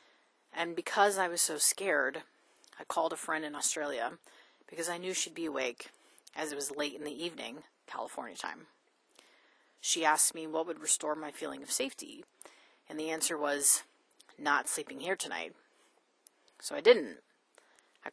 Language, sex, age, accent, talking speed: English, female, 30-49, American, 160 wpm